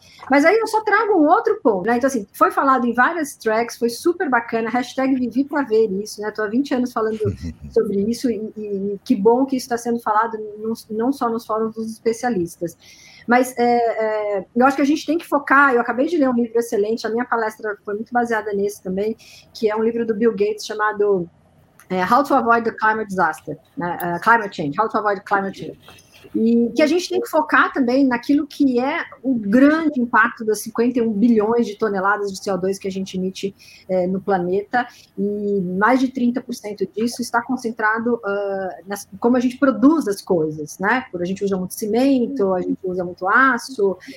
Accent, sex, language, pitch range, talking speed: Brazilian, female, Portuguese, 200-255 Hz, 210 wpm